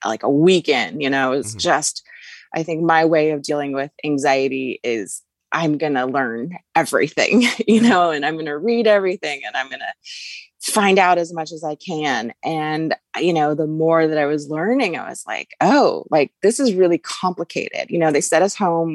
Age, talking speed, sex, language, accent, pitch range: 20-39, 205 wpm, female, English, American, 145-185 Hz